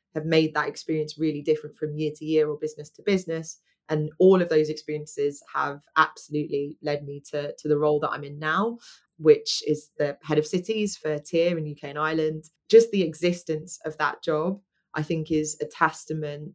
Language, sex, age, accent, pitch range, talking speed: English, female, 20-39, British, 150-160 Hz, 195 wpm